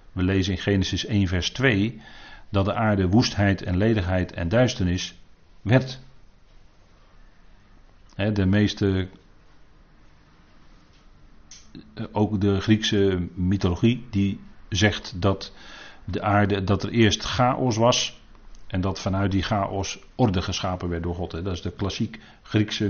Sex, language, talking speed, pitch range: male, Dutch, 120 wpm, 95-110 Hz